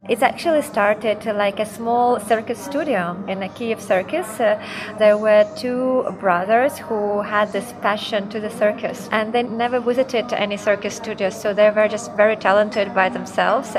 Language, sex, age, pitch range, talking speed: Czech, female, 20-39, 195-225 Hz, 170 wpm